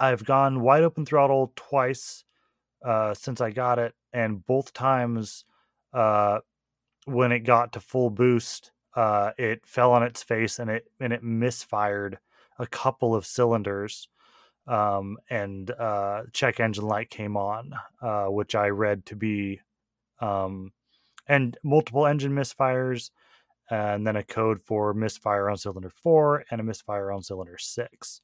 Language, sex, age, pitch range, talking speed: English, male, 30-49, 105-130 Hz, 150 wpm